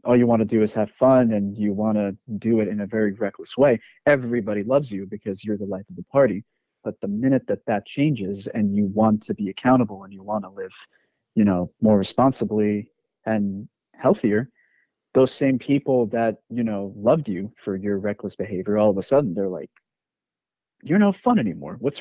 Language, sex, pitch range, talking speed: English, male, 100-125 Hz, 205 wpm